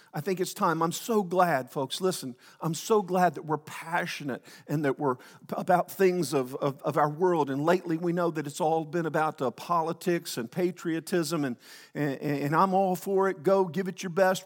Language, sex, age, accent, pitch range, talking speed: English, male, 50-69, American, 145-195 Hz, 210 wpm